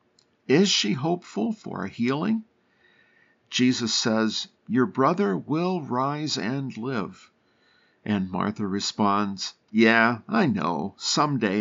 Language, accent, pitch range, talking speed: English, American, 110-165 Hz, 110 wpm